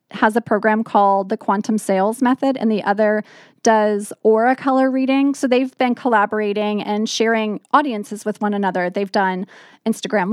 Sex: female